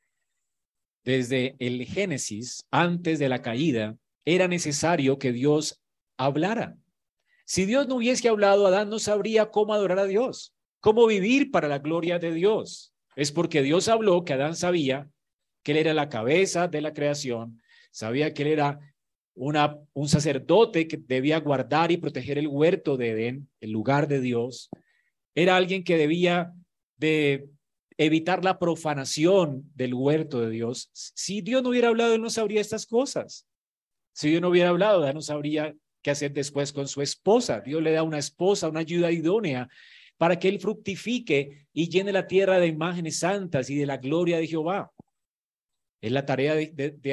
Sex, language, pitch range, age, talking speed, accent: male, Spanish, 140-190 Hz, 40-59, 170 wpm, Colombian